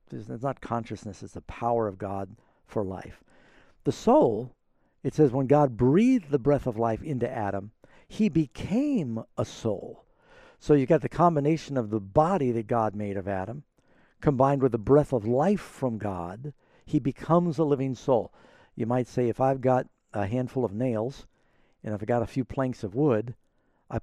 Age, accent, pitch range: 60-79, American, 105-135 Hz